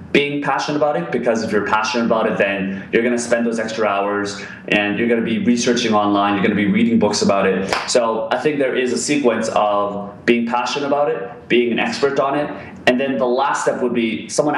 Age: 20-39